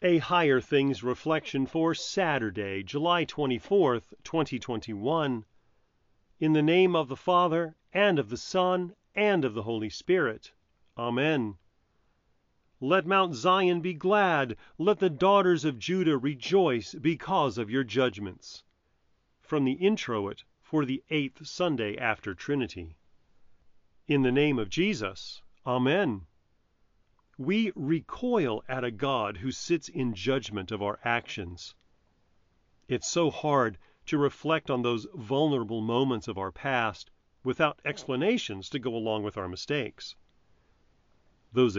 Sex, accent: male, American